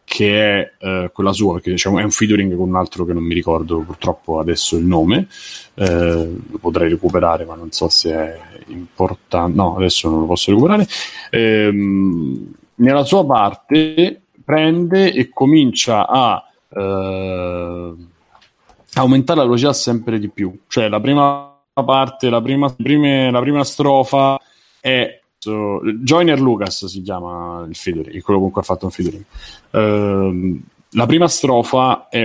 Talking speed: 150 wpm